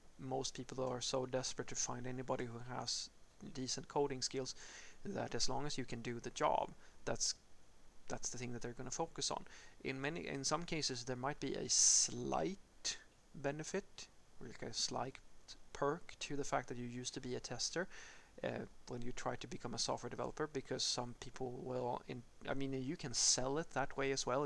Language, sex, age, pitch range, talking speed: English, male, 30-49, 125-140 Hz, 200 wpm